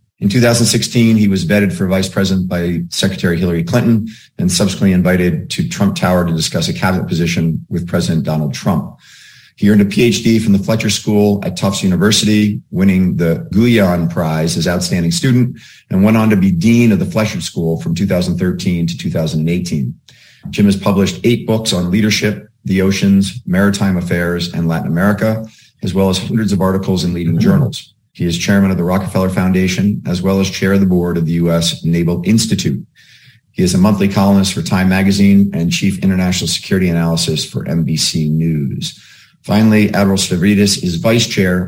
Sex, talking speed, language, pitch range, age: male, 175 wpm, English, 85-105 Hz, 40-59